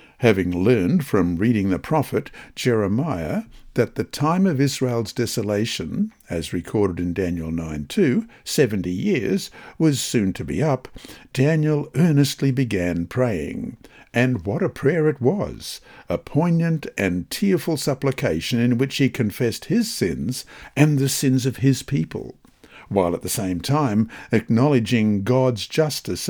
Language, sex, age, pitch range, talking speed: English, male, 60-79, 105-150 Hz, 140 wpm